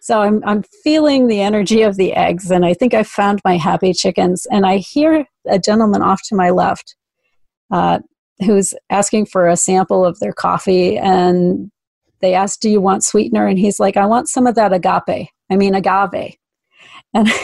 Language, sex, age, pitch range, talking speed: English, female, 40-59, 185-220 Hz, 190 wpm